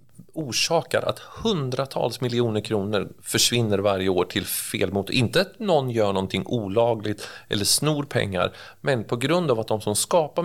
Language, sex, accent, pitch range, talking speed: Swedish, male, native, 100-125 Hz, 160 wpm